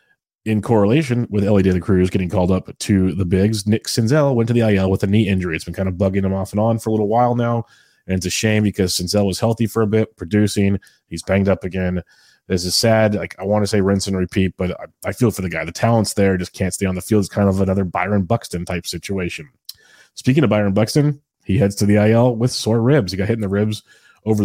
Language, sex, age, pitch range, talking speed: English, male, 30-49, 95-110 Hz, 260 wpm